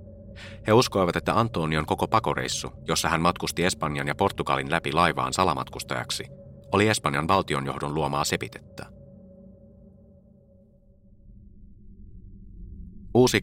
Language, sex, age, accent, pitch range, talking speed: Finnish, male, 30-49, native, 80-100 Hz, 95 wpm